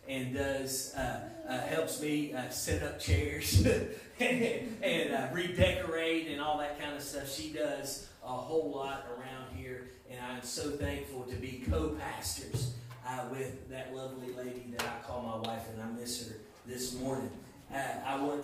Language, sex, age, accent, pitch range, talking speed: English, male, 30-49, American, 120-145 Hz, 170 wpm